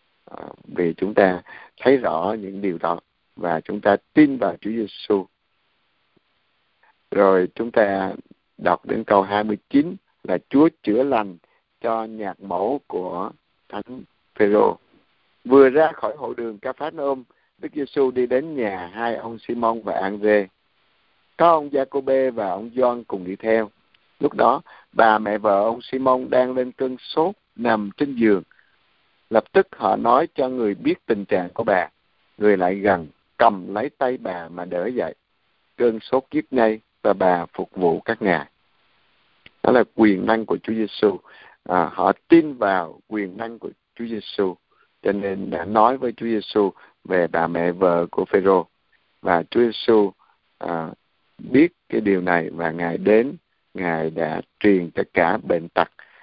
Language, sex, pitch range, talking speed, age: Vietnamese, male, 100-130 Hz, 160 wpm, 60-79